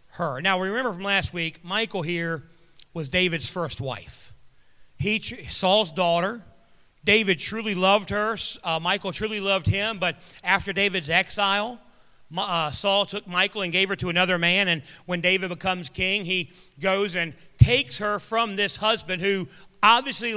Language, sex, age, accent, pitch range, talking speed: English, male, 40-59, American, 175-215 Hz, 160 wpm